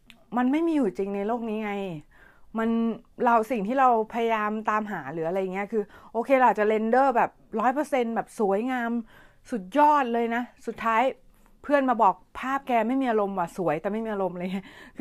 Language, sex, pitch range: Thai, female, 200-250 Hz